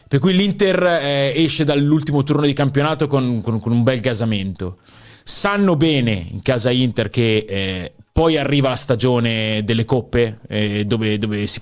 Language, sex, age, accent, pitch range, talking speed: Italian, male, 30-49, native, 105-145 Hz, 165 wpm